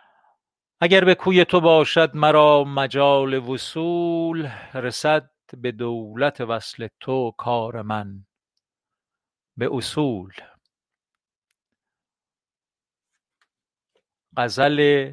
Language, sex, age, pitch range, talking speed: Persian, male, 50-69, 115-150 Hz, 70 wpm